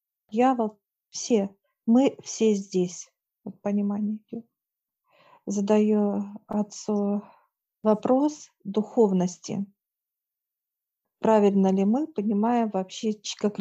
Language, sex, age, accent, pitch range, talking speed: Russian, female, 40-59, native, 195-225 Hz, 70 wpm